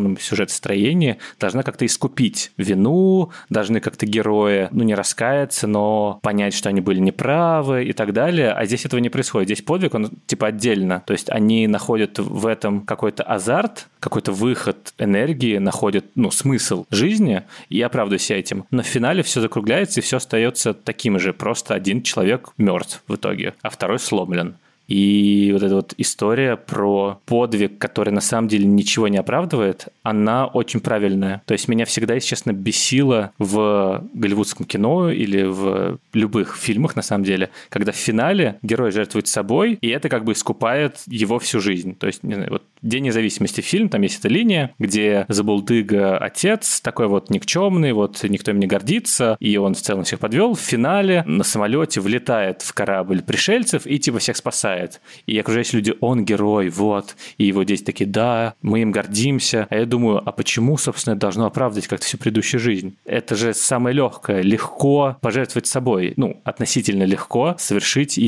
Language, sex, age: Russian, male, 20-39